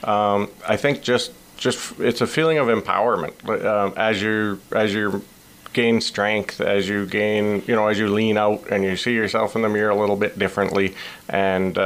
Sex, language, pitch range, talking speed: male, English, 100-110 Hz, 190 wpm